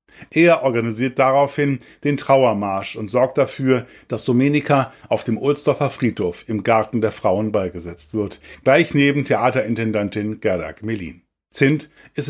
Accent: German